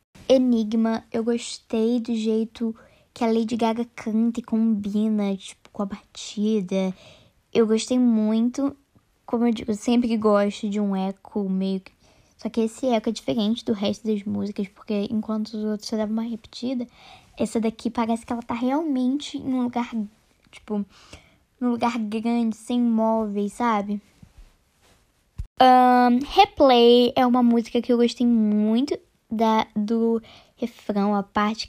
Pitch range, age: 215-255 Hz, 10-29